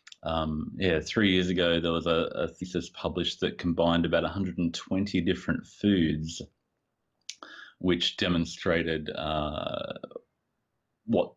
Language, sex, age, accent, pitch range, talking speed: English, male, 30-49, Australian, 80-90 Hz, 105 wpm